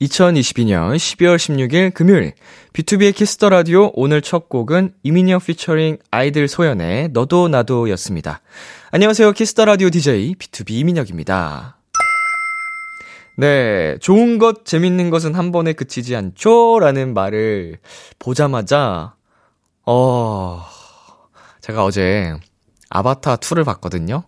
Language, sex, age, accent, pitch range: Korean, male, 20-39, native, 100-165 Hz